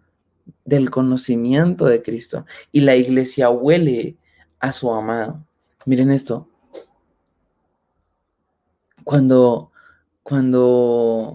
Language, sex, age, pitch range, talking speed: Spanish, male, 20-39, 120-155 Hz, 80 wpm